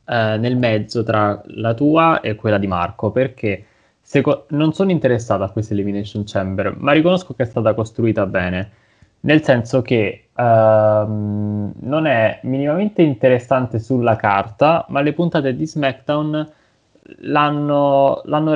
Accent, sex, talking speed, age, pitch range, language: native, male, 125 wpm, 20-39, 105-140 Hz, Italian